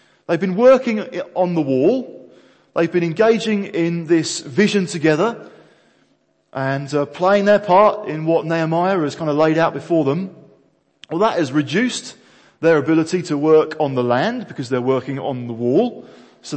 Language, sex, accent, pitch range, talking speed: English, male, British, 140-185 Hz, 165 wpm